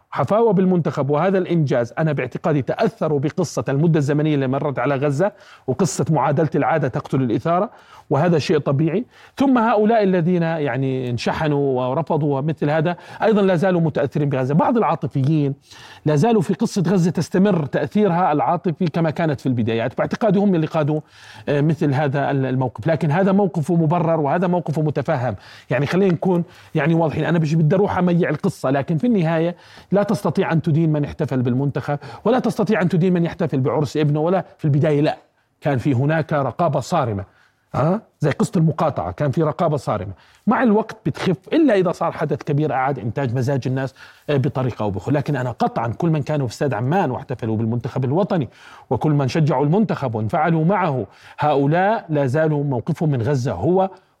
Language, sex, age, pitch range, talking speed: Arabic, male, 40-59, 140-180 Hz, 160 wpm